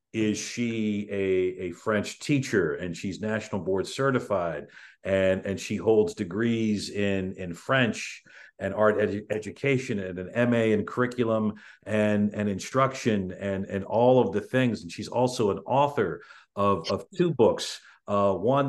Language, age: English, 50-69